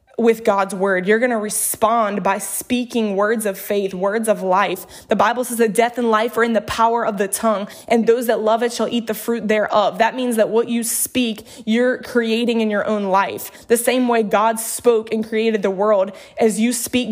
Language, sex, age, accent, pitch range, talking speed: English, female, 20-39, American, 210-235 Hz, 220 wpm